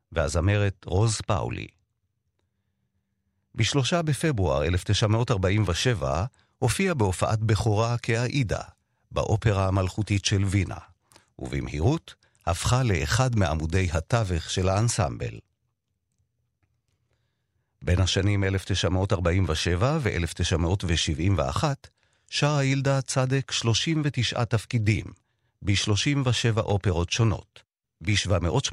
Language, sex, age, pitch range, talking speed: Hebrew, male, 50-69, 95-120 Hz, 70 wpm